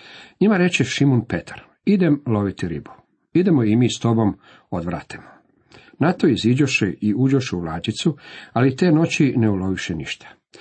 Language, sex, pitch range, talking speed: Croatian, male, 105-135 Hz, 145 wpm